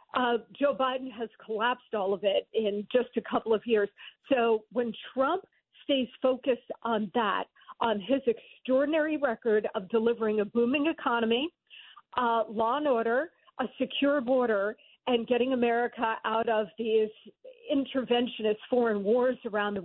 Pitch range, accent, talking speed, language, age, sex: 220-260 Hz, American, 145 wpm, English, 50-69, female